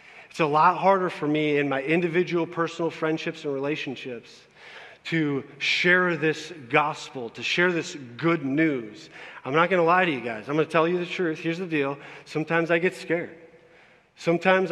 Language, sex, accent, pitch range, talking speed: English, male, American, 145-180 Hz, 185 wpm